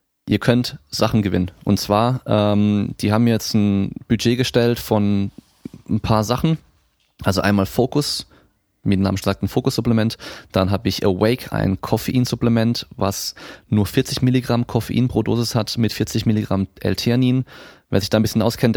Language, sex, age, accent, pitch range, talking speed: German, male, 20-39, German, 100-120 Hz, 160 wpm